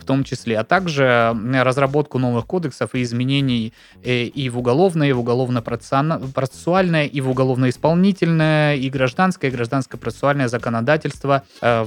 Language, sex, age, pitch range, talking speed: Russian, male, 20-39, 115-140 Hz, 125 wpm